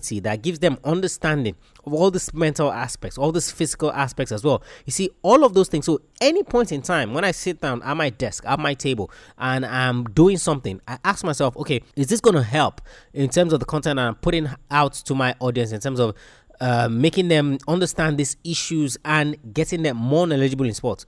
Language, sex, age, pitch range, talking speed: English, male, 20-39, 125-175 Hz, 215 wpm